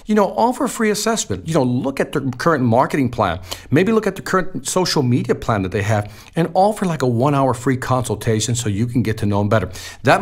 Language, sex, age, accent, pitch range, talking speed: English, male, 50-69, American, 110-155 Hz, 240 wpm